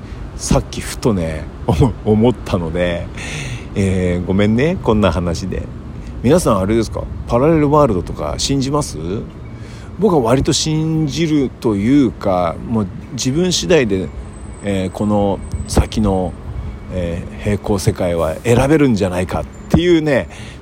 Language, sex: Japanese, male